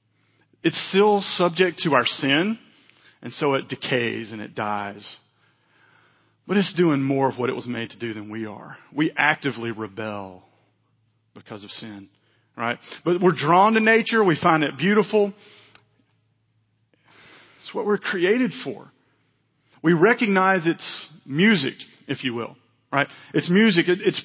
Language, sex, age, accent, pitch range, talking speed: English, male, 40-59, American, 130-200 Hz, 145 wpm